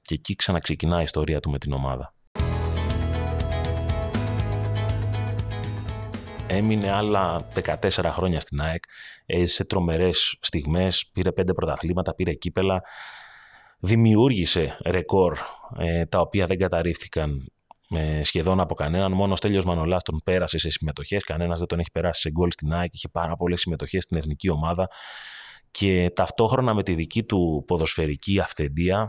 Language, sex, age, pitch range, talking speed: Greek, male, 30-49, 80-100 Hz, 130 wpm